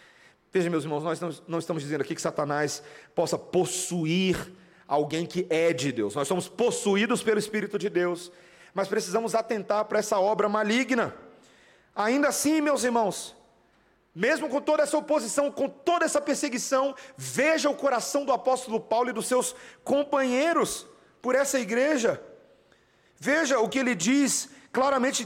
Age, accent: 40-59, Brazilian